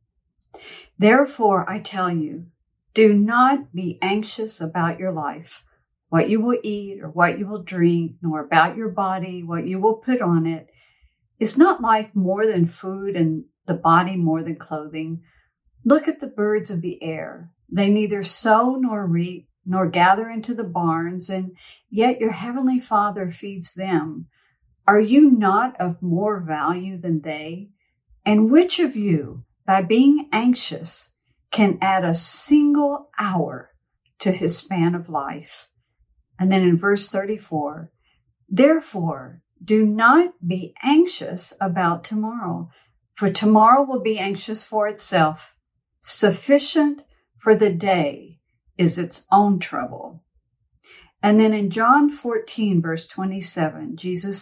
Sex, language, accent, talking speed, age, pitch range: female, English, American, 140 wpm, 50-69, 170-220 Hz